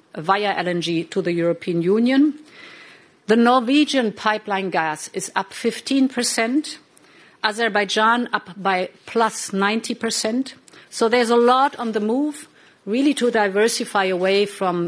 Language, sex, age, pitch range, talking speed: English, female, 50-69, 195-250 Hz, 120 wpm